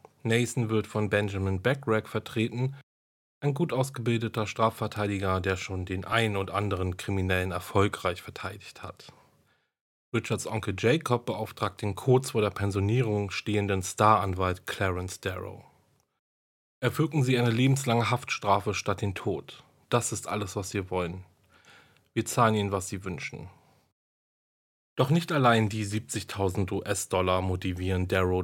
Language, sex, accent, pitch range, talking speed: German, male, German, 95-115 Hz, 130 wpm